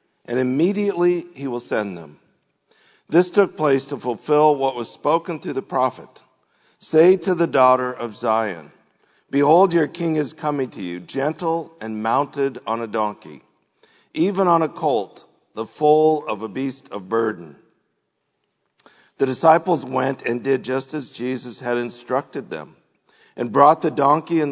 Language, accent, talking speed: English, American, 155 wpm